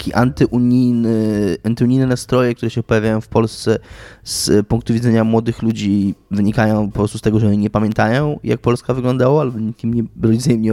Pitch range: 110-135 Hz